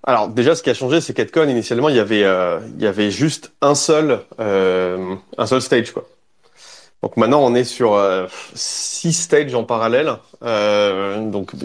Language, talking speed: French, 185 wpm